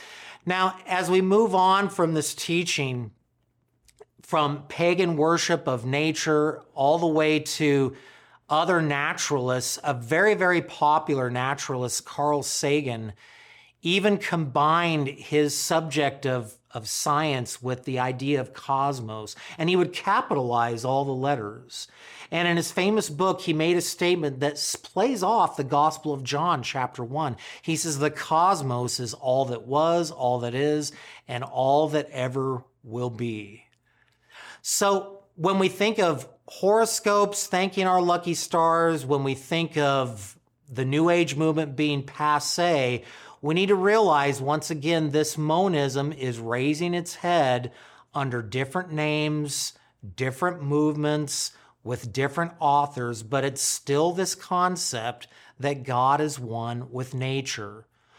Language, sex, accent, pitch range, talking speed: English, male, American, 130-170 Hz, 135 wpm